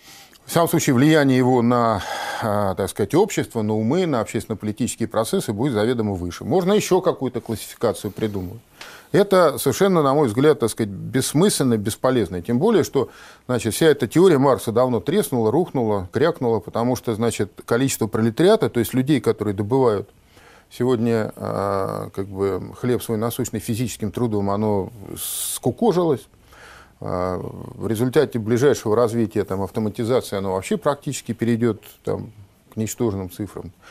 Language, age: Russian, 40-59